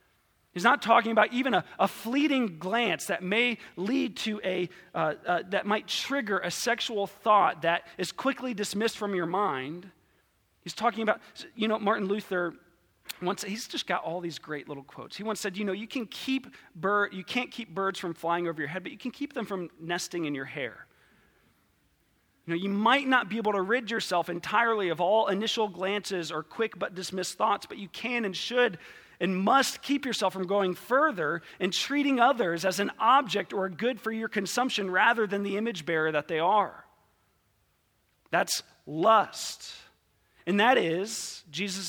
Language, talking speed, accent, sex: English, 190 wpm, American, male